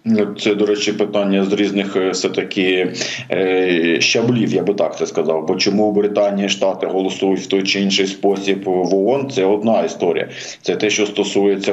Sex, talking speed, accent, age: male, 170 wpm, native, 50-69